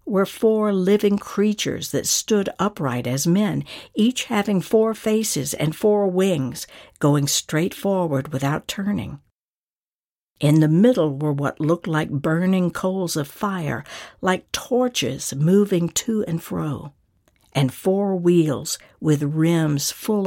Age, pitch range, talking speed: 60-79, 145-195 Hz, 130 wpm